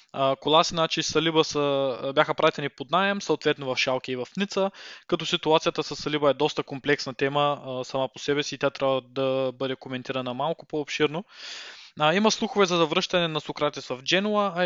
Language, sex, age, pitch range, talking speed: Bulgarian, male, 20-39, 145-180 Hz, 175 wpm